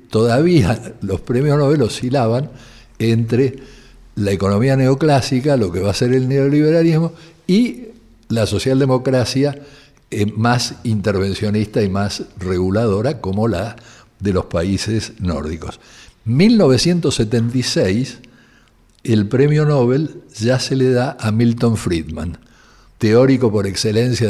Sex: male